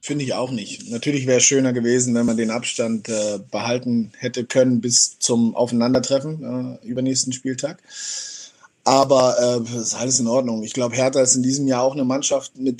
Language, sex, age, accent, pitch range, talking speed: German, male, 30-49, German, 125-145 Hz, 190 wpm